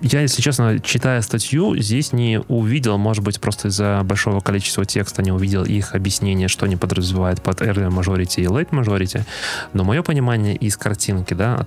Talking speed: 180 wpm